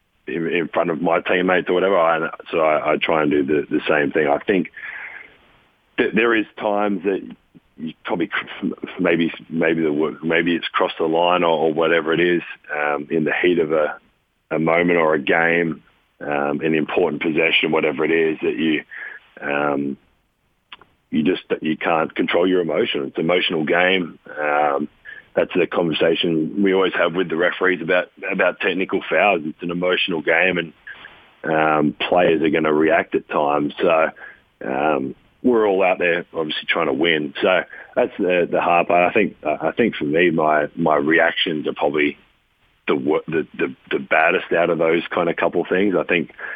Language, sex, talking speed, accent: English, male, 185 wpm, Australian